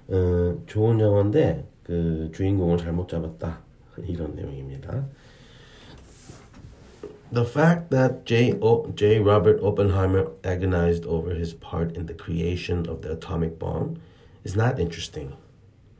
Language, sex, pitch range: Korean, male, 85-105 Hz